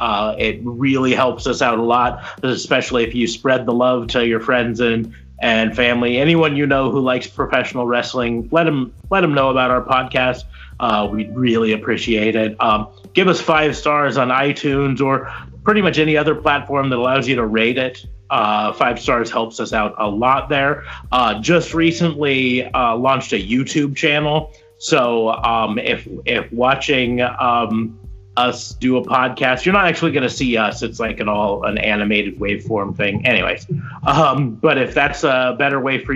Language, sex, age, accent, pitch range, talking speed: English, male, 30-49, American, 115-135 Hz, 185 wpm